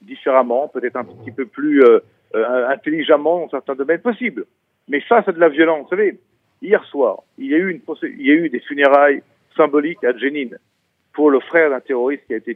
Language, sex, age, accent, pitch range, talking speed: French, male, 50-69, French, 145-220 Hz, 215 wpm